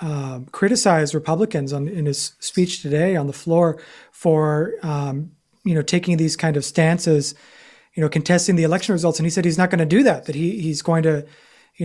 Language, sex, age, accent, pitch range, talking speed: English, male, 30-49, American, 165-220 Hz, 210 wpm